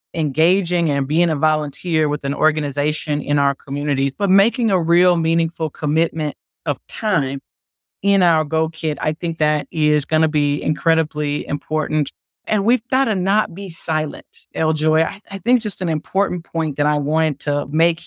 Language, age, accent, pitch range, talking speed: English, 30-49, American, 155-200 Hz, 170 wpm